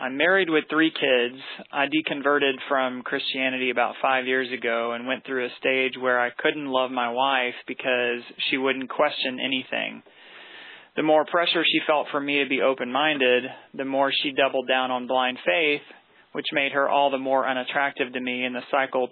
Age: 30-49